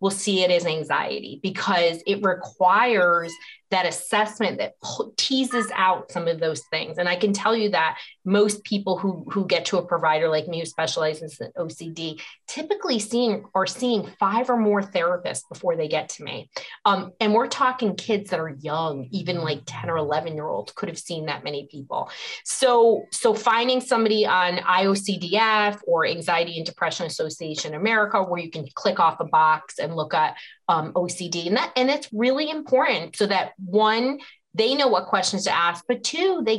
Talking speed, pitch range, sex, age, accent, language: 180 wpm, 175-235 Hz, female, 30-49, American, English